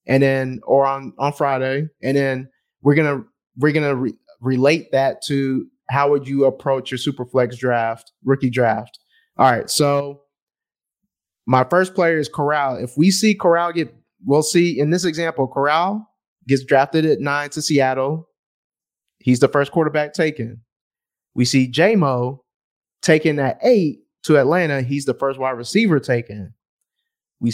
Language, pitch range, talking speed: English, 135-165 Hz, 155 wpm